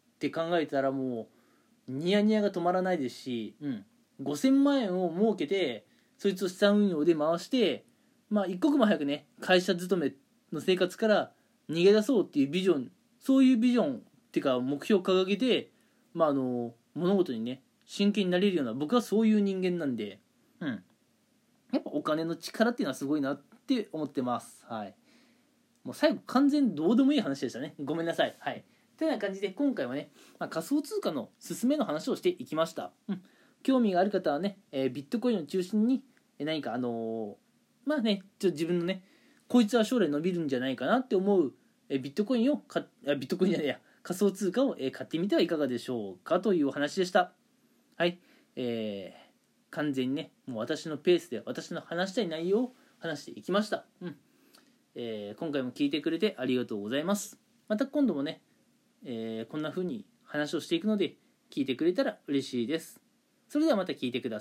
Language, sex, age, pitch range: Japanese, male, 20-39, 155-245 Hz